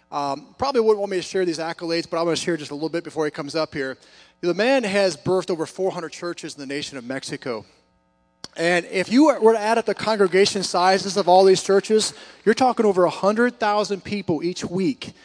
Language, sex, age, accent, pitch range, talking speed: English, male, 40-59, American, 160-195 Hz, 220 wpm